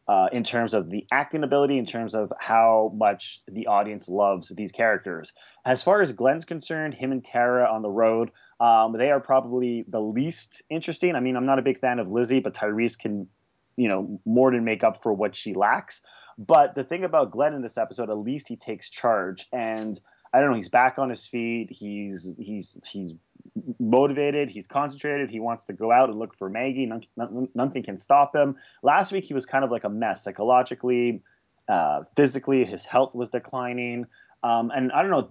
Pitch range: 110-130 Hz